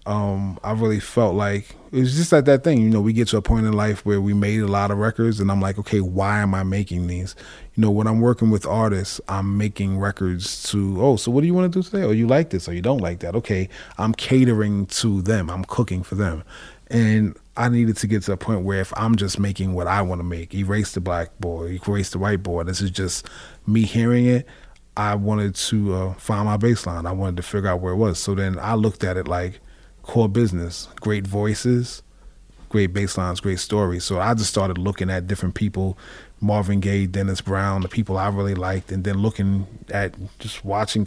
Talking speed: 230 wpm